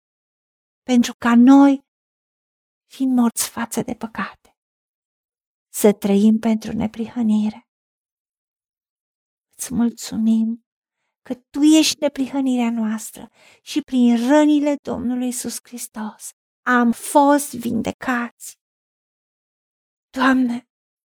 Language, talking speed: Romanian, 80 wpm